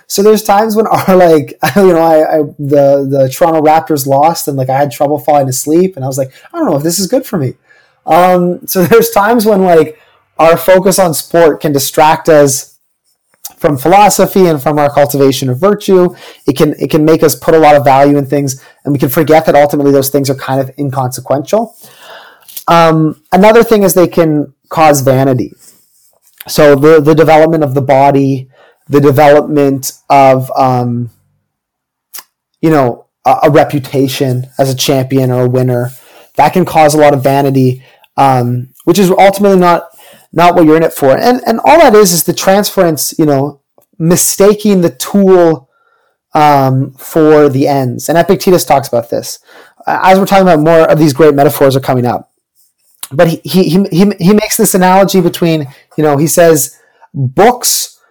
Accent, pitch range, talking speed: American, 140-180 Hz, 185 wpm